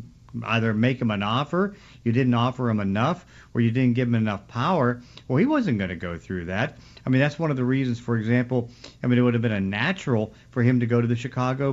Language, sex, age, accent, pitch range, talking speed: English, male, 50-69, American, 110-125 Hz, 250 wpm